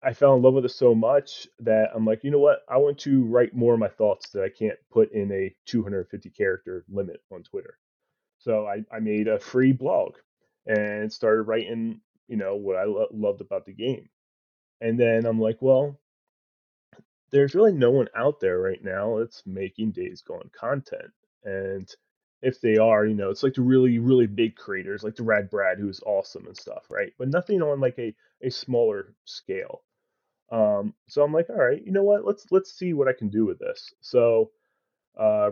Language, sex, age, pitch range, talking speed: English, male, 20-39, 105-180 Hz, 200 wpm